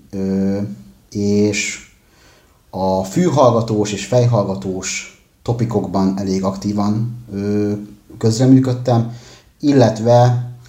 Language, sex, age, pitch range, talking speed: Hungarian, male, 30-49, 95-120 Hz, 65 wpm